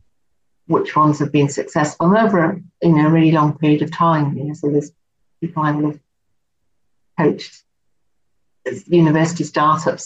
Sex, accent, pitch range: female, British, 140-155 Hz